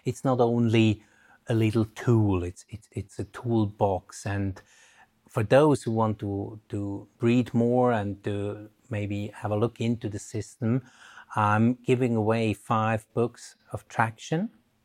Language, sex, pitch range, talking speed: English, male, 110-130 Hz, 140 wpm